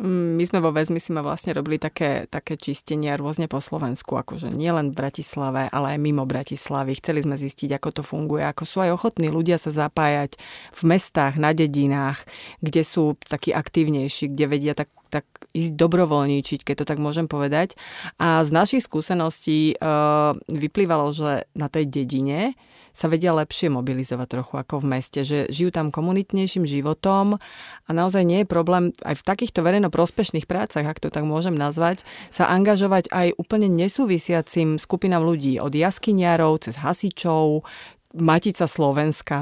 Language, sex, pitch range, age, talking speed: Slovak, female, 145-180 Hz, 30-49, 160 wpm